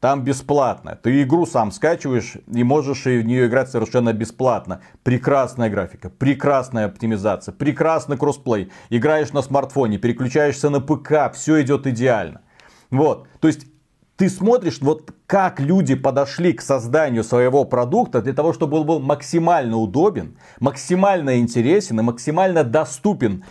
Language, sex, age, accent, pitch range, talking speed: Russian, male, 40-59, native, 125-165 Hz, 135 wpm